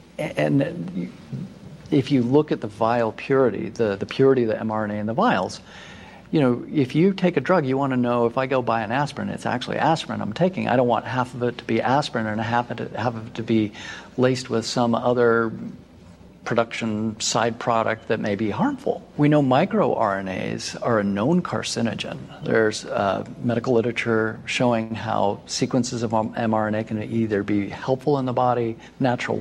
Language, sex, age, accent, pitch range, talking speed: English, male, 50-69, American, 110-130 Hz, 185 wpm